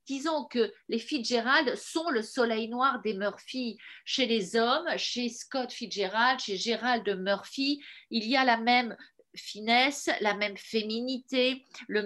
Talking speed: 145 wpm